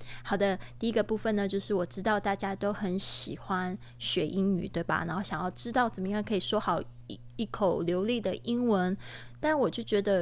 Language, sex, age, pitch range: Chinese, female, 20-39, 175-210 Hz